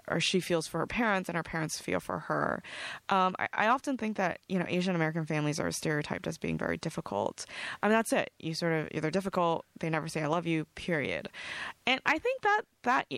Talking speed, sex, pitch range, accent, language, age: 230 wpm, female, 155-195 Hz, American, English, 20-39